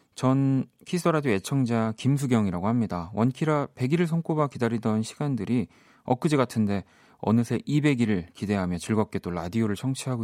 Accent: native